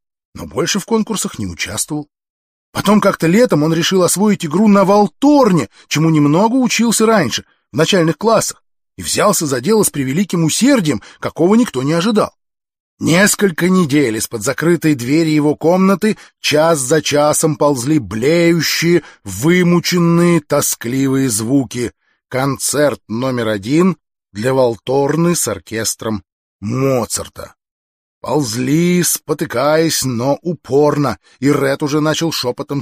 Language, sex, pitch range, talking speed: Russian, male, 125-195 Hz, 120 wpm